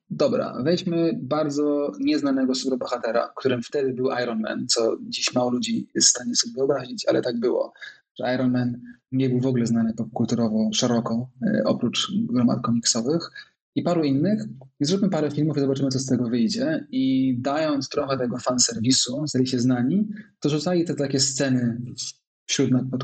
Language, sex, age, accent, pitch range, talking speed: Polish, male, 20-39, native, 125-165 Hz, 165 wpm